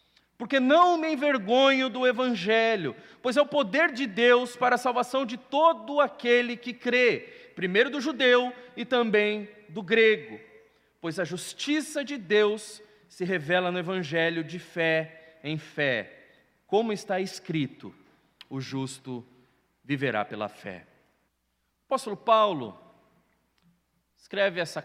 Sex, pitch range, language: male, 175-250 Hz, Portuguese